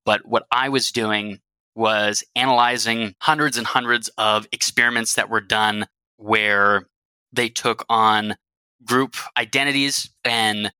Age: 20-39